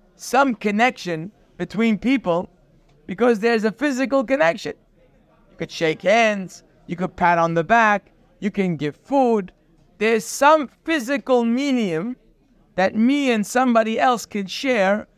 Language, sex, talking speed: English, male, 135 wpm